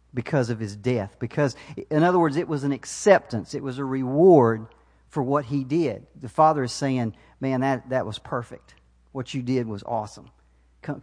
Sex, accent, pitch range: male, American, 120-155 Hz